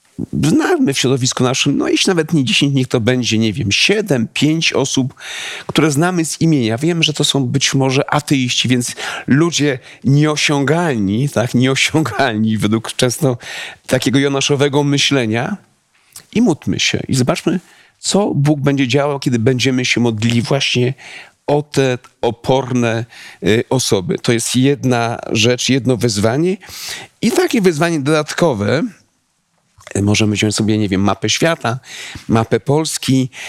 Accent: native